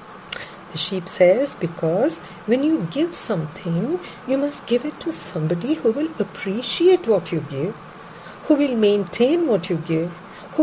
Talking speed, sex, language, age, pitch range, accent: 145 wpm, female, English, 50-69, 180-285 Hz, Indian